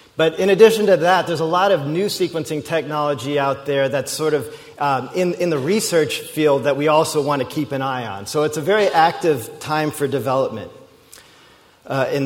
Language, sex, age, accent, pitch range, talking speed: English, male, 40-59, American, 140-175 Hz, 205 wpm